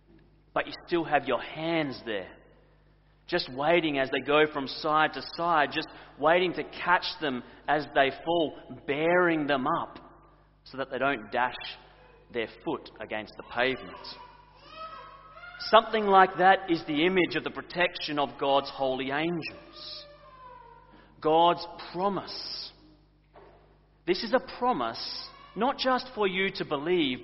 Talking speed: 135 wpm